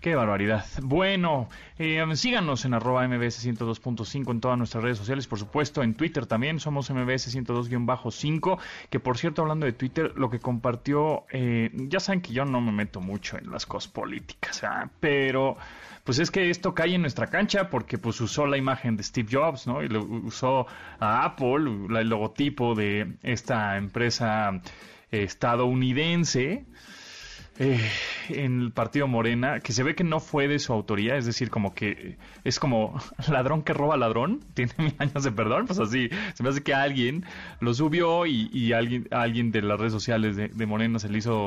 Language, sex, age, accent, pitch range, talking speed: Spanish, male, 30-49, Mexican, 115-145 Hz, 180 wpm